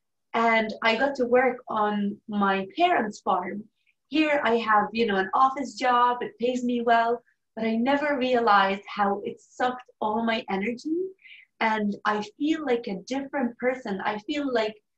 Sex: female